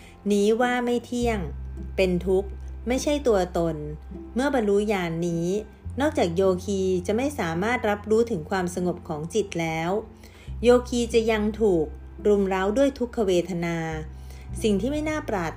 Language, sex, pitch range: Thai, female, 165-225 Hz